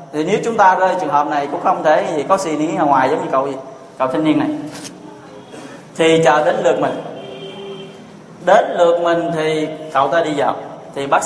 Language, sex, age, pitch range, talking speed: Vietnamese, male, 20-39, 150-200 Hz, 215 wpm